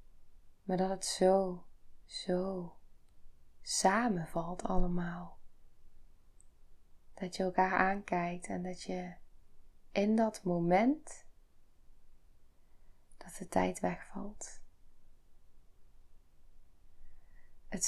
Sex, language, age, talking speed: female, Dutch, 20-39, 75 wpm